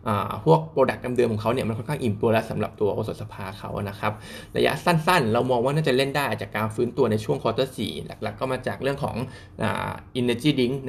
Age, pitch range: 20-39, 110-130 Hz